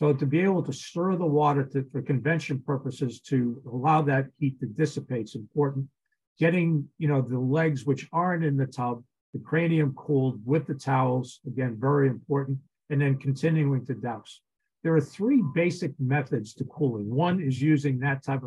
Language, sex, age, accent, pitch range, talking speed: English, male, 50-69, American, 130-150 Hz, 170 wpm